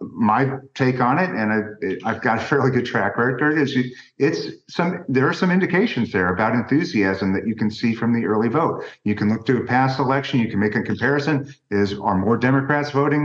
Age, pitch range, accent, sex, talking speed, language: 50-69, 105-140 Hz, American, male, 220 wpm, English